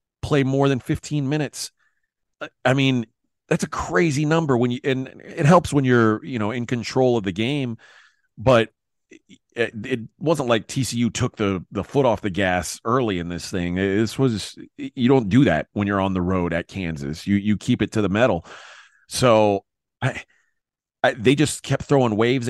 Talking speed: 185 wpm